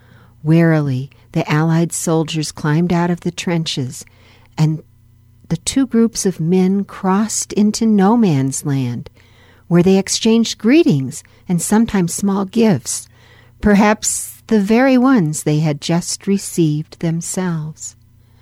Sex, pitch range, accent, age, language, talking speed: female, 120-185 Hz, American, 60-79, English, 120 wpm